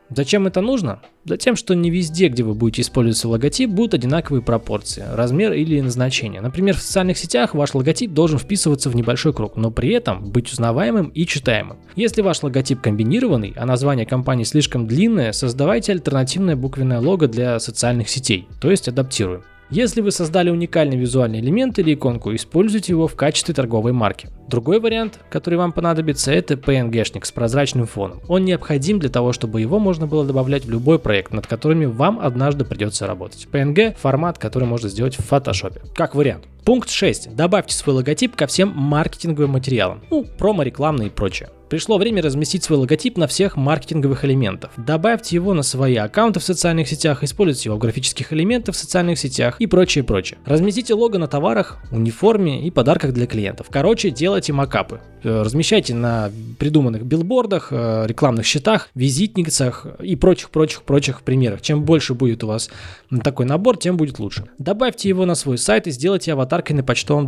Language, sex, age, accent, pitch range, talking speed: Russian, male, 20-39, native, 120-175 Hz, 170 wpm